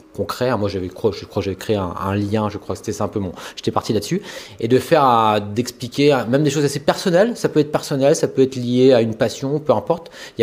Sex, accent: male, French